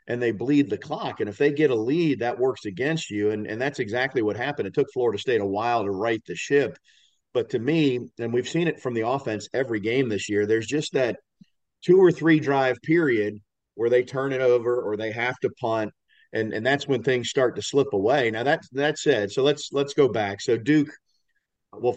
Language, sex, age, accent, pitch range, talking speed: English, male, 50-69, American, 105-135 Hz, 225 wpm